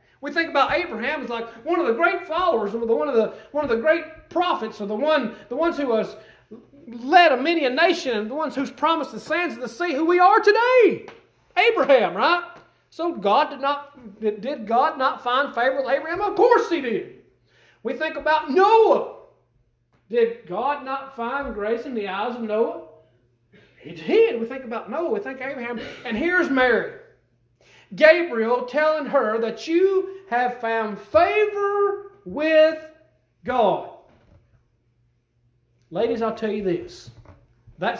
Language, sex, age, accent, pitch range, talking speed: English, male, 40-59, American, 195-310 Hz, 165 wpm